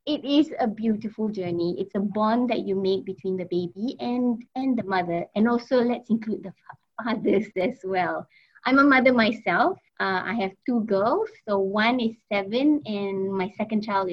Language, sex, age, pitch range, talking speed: English, female, 20-39, 190-240 Hz, 185 wpm